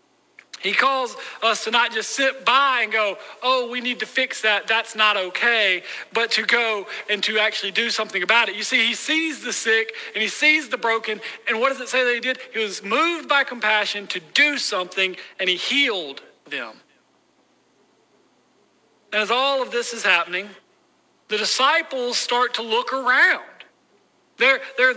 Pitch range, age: 225-295 Hz, 40-59